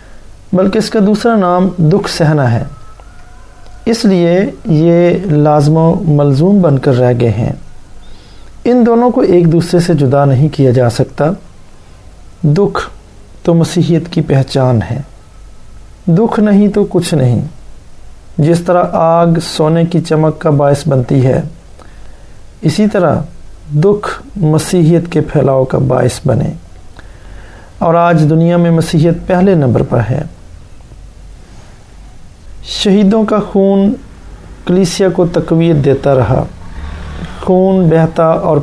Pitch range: 120-175 Hz